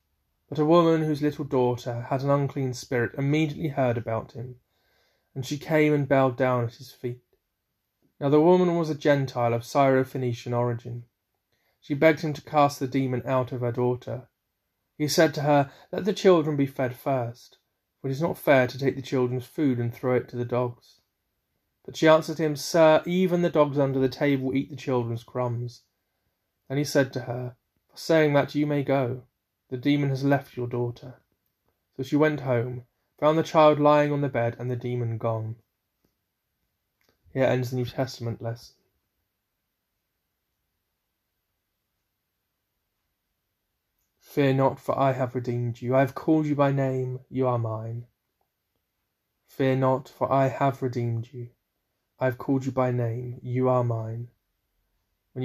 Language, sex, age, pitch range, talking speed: English, male, 30-49, 120-140 Hz, 170 wpm